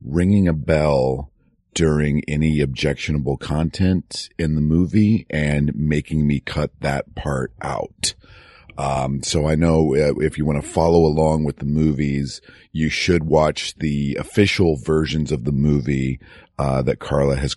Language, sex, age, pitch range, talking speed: English, male, 40-59, 70-90 Hz, 145 wpm